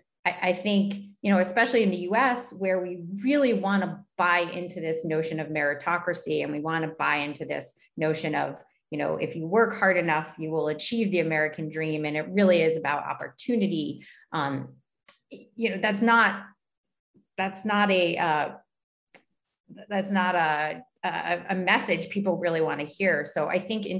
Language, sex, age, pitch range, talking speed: English, female, 30-49, 160-200 Hz, 175 wpm